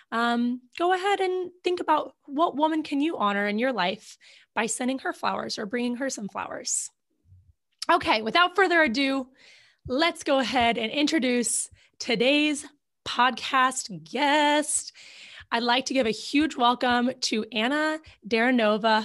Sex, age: female, 20-39